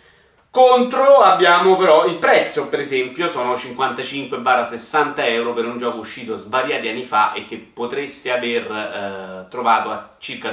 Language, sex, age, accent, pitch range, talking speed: Italian, male, 30-49, native, 110-145 Hz, 140 wpm